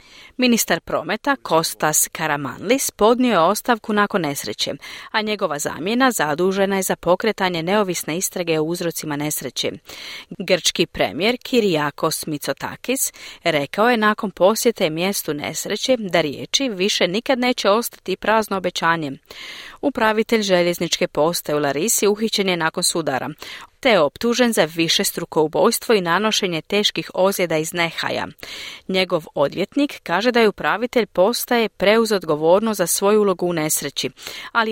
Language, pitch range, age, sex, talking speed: Croatian, 160-220 Hz, 40-59, female, 130 wpm